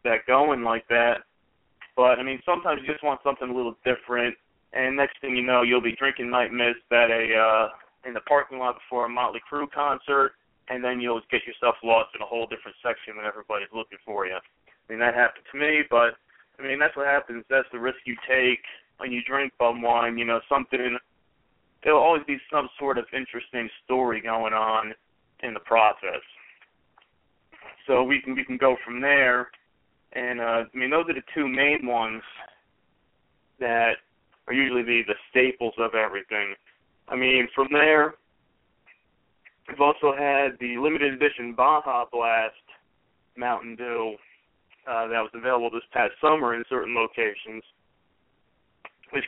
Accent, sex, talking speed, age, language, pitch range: American, male, 175 wpm, 20-39, English, 115-135 Hz